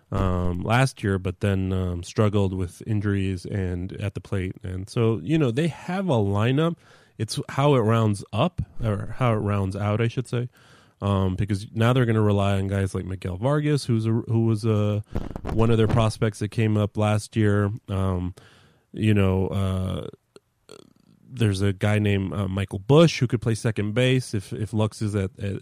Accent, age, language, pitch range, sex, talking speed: American, 30-49, English, 100-120 Hz, male, 185 wpm